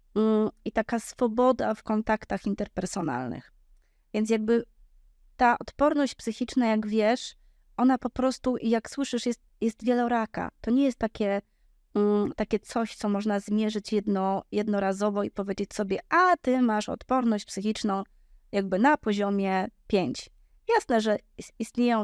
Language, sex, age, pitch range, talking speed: Polish, female, 20-39, 210-245 Hz, 130 wpm